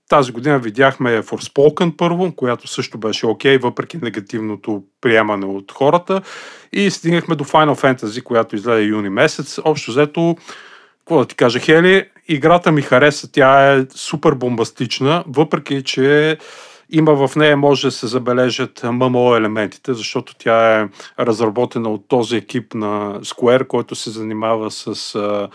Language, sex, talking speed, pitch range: Bulgarian, male, 145 wpm, 110-150 Hz